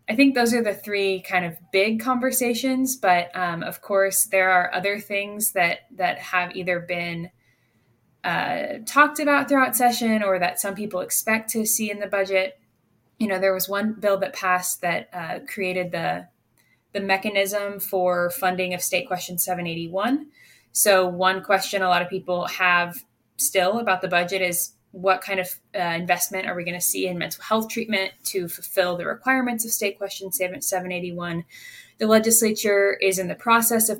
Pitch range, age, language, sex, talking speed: 180-220 Hz, 10-29, English, female, 185 wpm